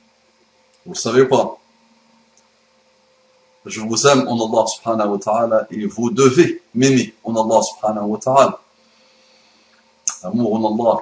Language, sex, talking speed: French, male, 125 wpm